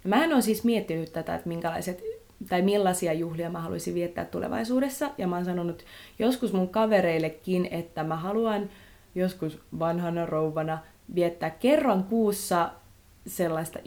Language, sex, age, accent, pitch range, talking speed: Finnish, female, 20-39, native, 165-190 Hz, 135 wpm